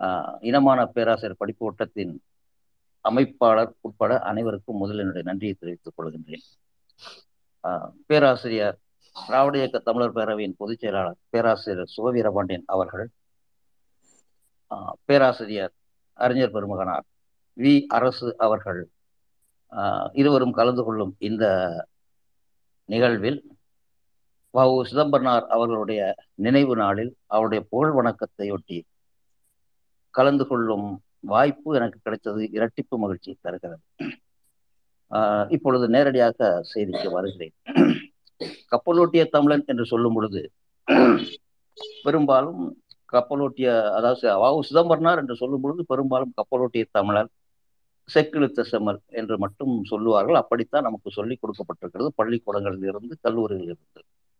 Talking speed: 90 wpm